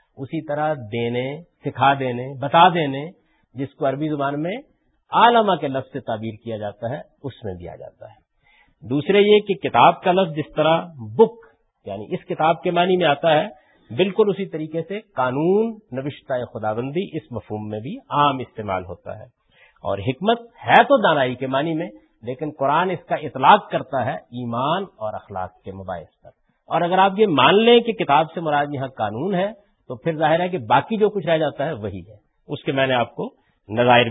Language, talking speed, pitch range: Urdu, 195 wpm, 125-190 Hz